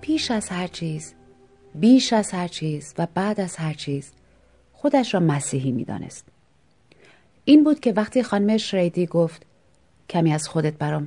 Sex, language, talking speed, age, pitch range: female, Persian, 150 wpm, 30-49, 150-215 Hz